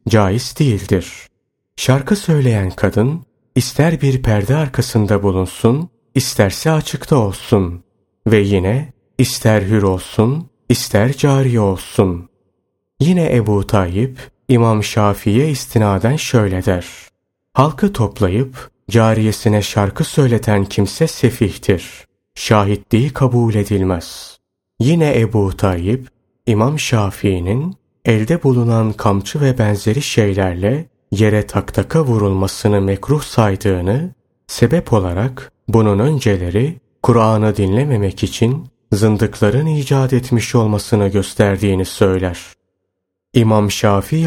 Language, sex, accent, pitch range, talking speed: Turkish, male, native, 100-130 Hz, 95 wpm